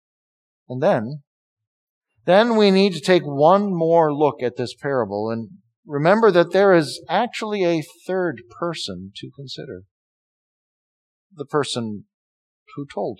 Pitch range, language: 135-195 Hz, English